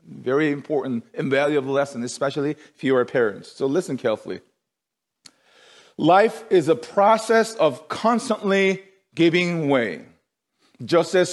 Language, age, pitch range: English, 40-59, 150-215 Hz